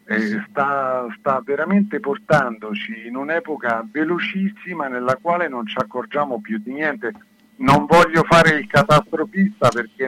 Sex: male